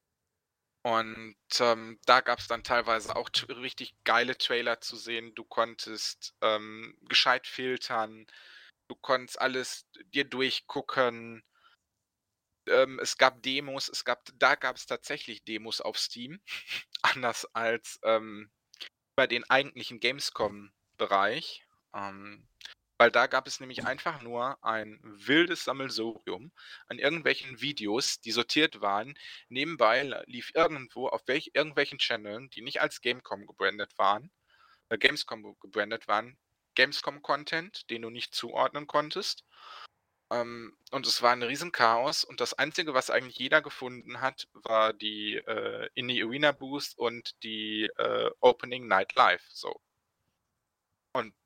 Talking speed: 130 wpm